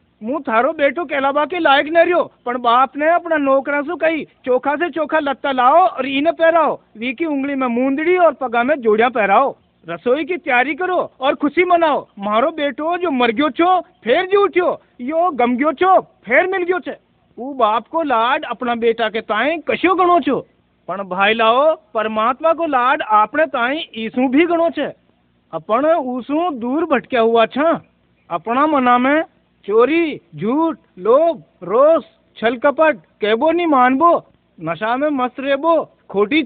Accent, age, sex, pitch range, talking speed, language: native, 50-69, male, 230-315 Hz, 155 wpm, Hindi